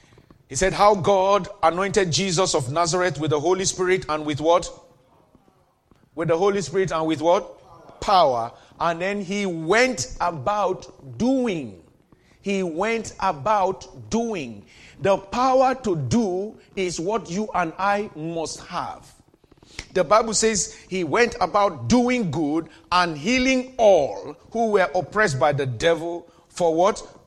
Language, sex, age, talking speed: English, male, 40-59, 140 wpm